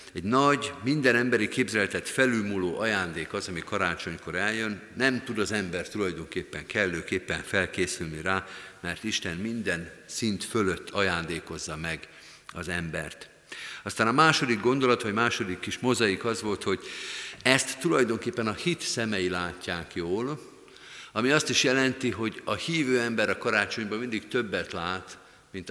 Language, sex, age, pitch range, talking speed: Hungarian, male, 50-69, 90-120 Hz, 140 wpm